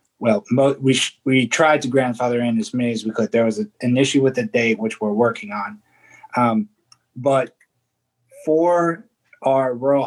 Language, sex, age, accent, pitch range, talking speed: English, male, 20-39, American, 120-135 Hz, 180 wpm